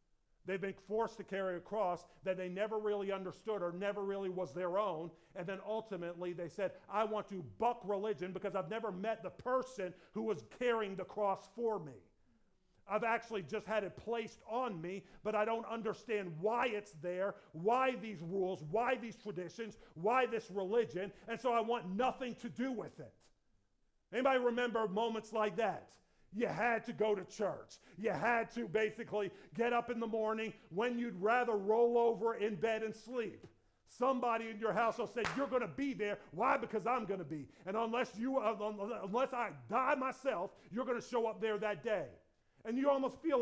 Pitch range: 195-235 Hz